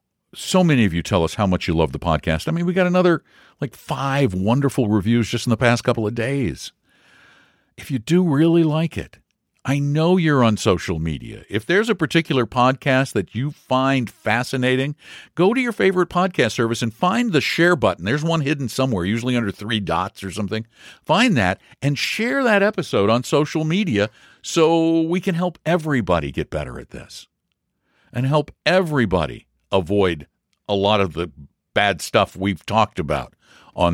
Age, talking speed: 50-69, 180 wpm